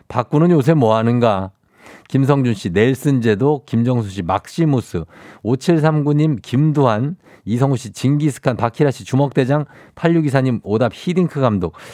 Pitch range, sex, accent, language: 100-140 Hz, male, native, Korean